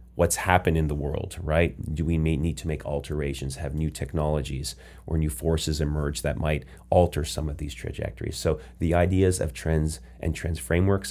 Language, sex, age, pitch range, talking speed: English, male, 30-49, 75-90 Hz, 190 wpm